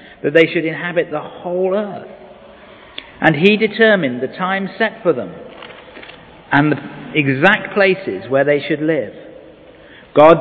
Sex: male